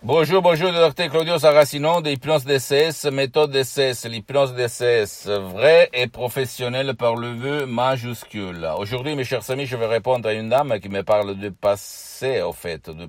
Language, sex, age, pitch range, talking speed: Italian, male, 60-79, 85-115 Hz, 170 wpm